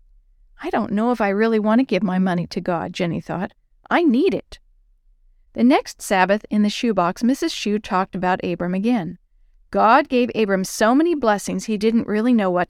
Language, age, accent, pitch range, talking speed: English, 50-69, American, 190-255 Hz, 195 wpm